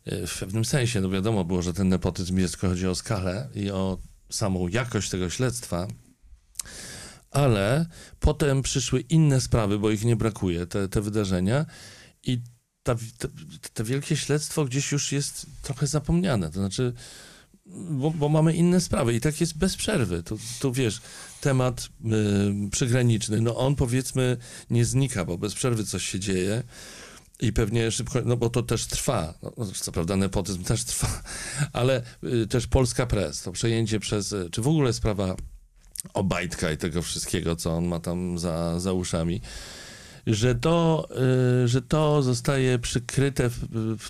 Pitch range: 95-130 Hz